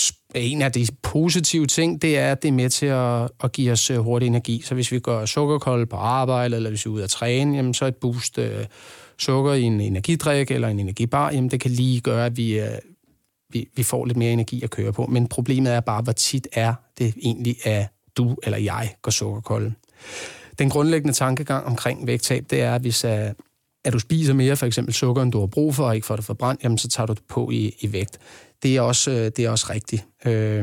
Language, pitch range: Danish, 115-140 Hz